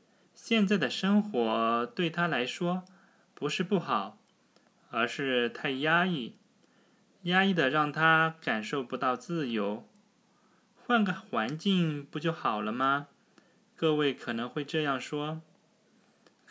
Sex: male